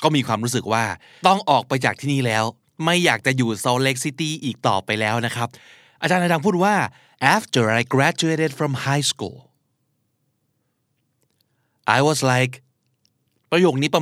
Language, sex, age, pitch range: Thai, male, 20-39, 120-140 Hz